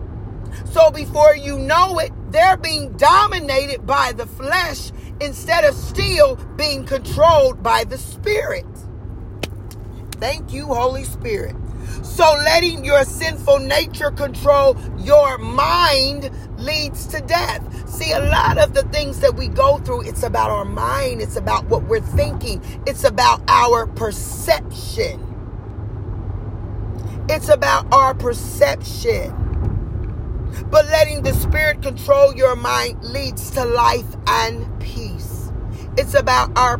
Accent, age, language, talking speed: American, 40-59, English, 125 wpm